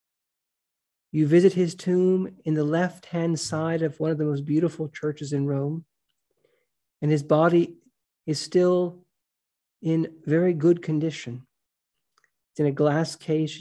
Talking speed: 135 wpm